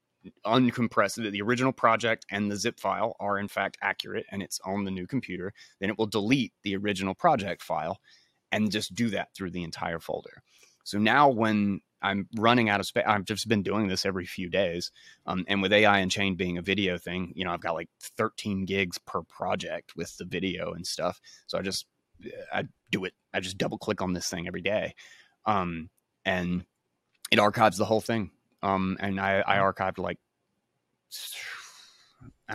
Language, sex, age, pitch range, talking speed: English, male, 20-39, 95-110 Hz, 190 wpm